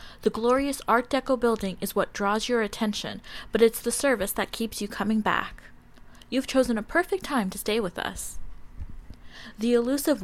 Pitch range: 200-235 Hz